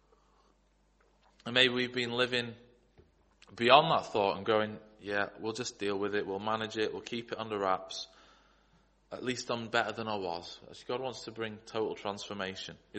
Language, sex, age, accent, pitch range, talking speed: English, male, 20-39, British, 105-140 Hz, 175 wpm